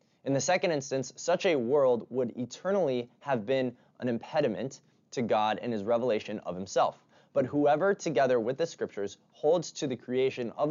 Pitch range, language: 115-150 Hz, English